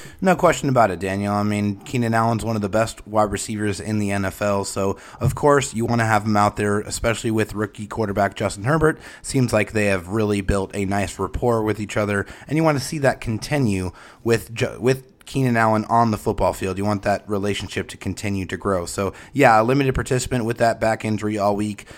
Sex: male